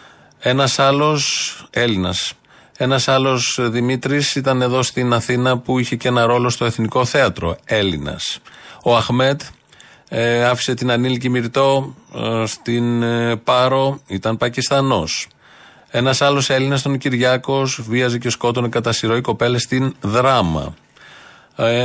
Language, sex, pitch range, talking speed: Greek, male, 120-135 Hz, 125 wpm